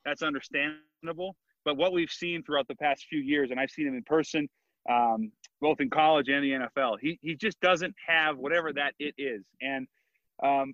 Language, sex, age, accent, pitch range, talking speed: English, male, 30-49, American, 145-195 Hz, 195 wpm